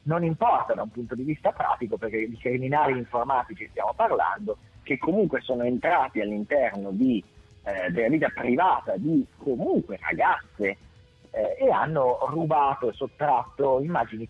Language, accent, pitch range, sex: Italian, native, 120-155 Hz, male